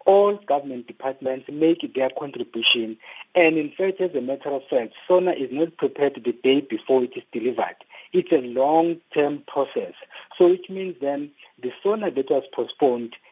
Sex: male